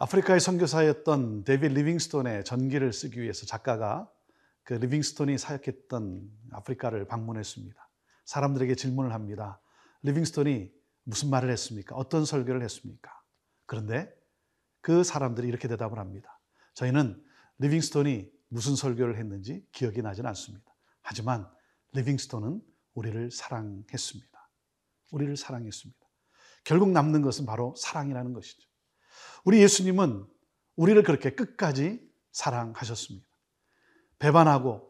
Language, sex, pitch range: Korean, male, 115-150 Hz